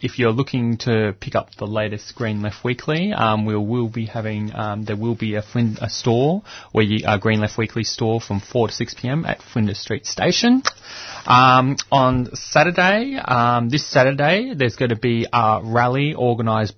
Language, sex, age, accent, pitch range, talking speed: English, male, 20-39, Australian, 105-120 Hz, 180 wpm